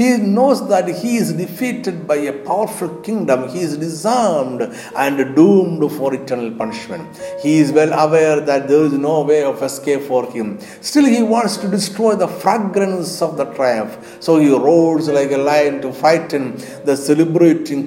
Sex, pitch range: male, 140-195 Hz